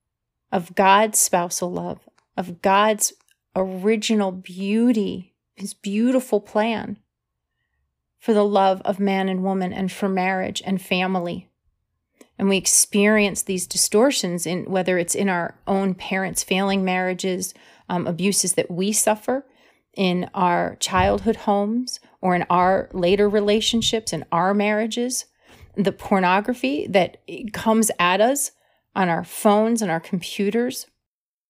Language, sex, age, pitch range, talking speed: English, female, 30-49, 185-215 Hz, 125 wpm